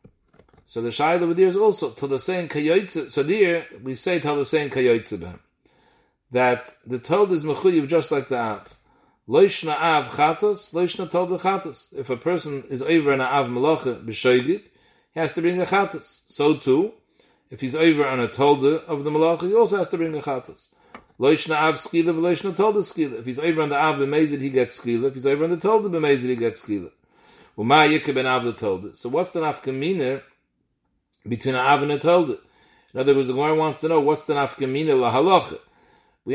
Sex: male